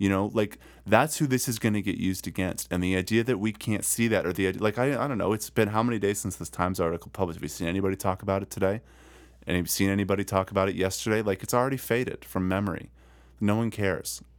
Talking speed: 265 wpm